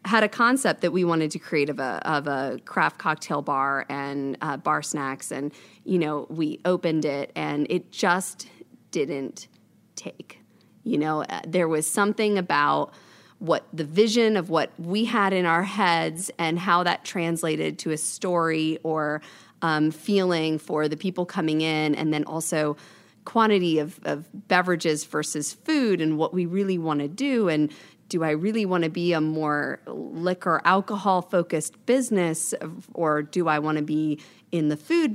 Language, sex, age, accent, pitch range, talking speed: English, female, 30-49, American, 150-180 Hz, 170 wpm